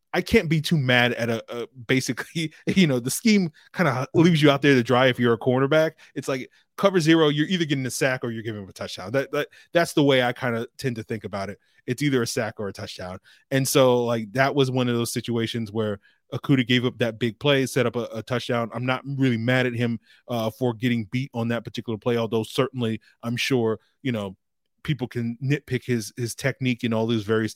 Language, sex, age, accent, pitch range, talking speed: English, male, 20-39, American, 115-140 Hz, 240 wpm